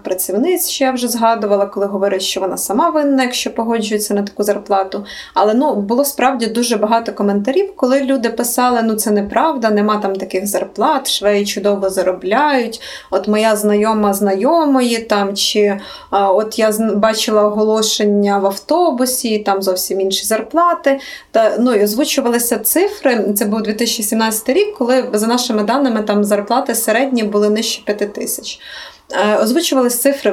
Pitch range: 210-270 Hz